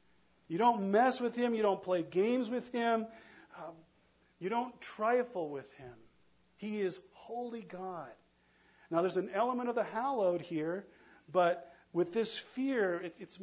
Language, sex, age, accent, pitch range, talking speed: English, male, 50-69, American, 150-220 Hz, 150 wpm